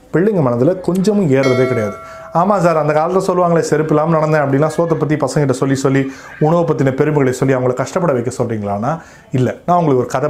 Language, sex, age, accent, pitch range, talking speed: Tamil, male, 30-49, native, 130-185 Hz, 185 wpm